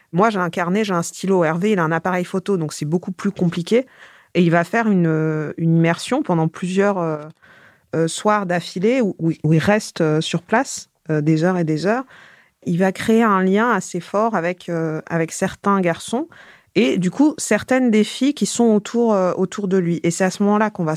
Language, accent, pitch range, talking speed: French, French, 175-215 Hz, 210 wpm